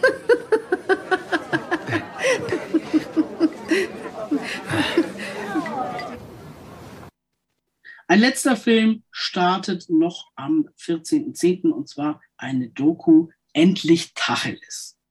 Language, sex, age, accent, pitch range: German, female, 50-69, German, 160-235 Hz